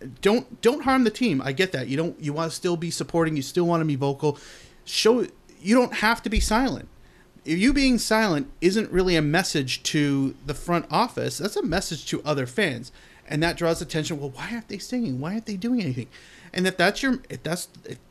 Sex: male